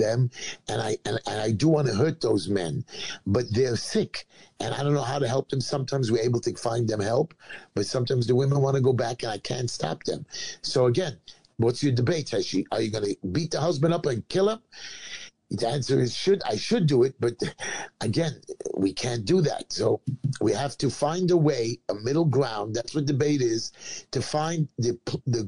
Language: English